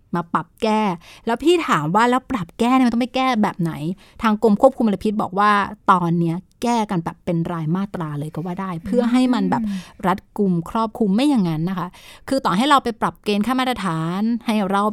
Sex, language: female, Thai